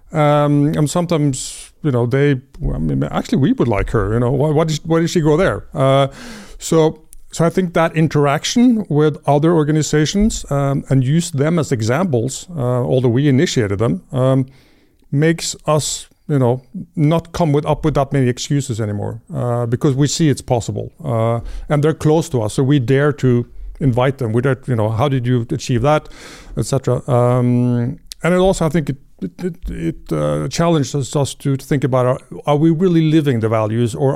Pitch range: 120-155 Hz